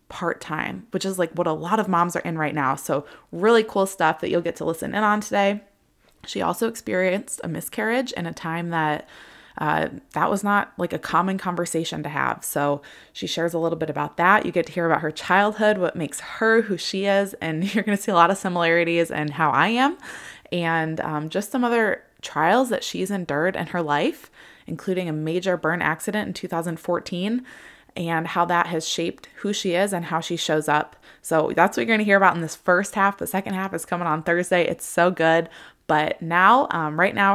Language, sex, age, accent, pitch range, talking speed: English, female, 20-39, American, 160-200 Hz, 220 wpm